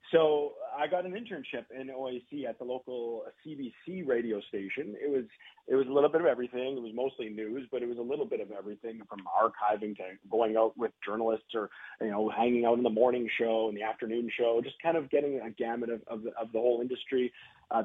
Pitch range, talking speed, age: 115-145 Hz, 230 wpm, 30-49